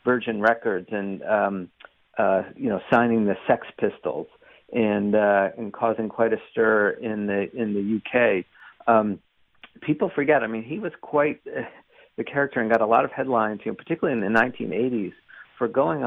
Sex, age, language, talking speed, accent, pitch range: male, 50-69, English, 180 wpm, American, 105-115 Hz